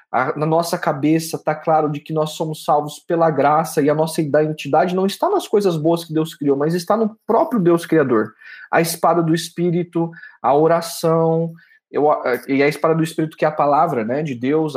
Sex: male